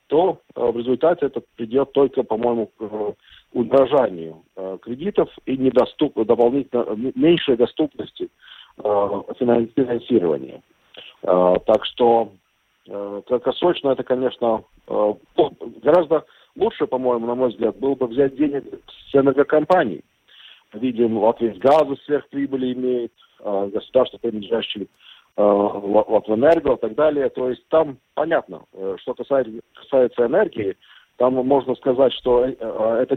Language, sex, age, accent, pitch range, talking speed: Russian, male, 50-69, native, 115-140 Hz, 105 wpm